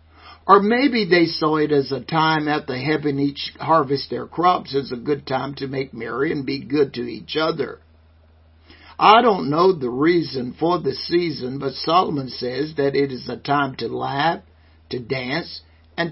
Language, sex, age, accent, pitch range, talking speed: English, male, 60-79, American, 115-190 Hz, 180 wpm